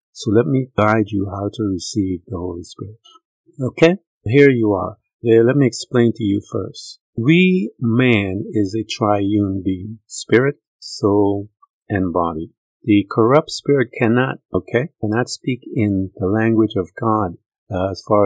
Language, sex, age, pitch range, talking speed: English, male, 50-69, 95-115 Hz, 155 wpm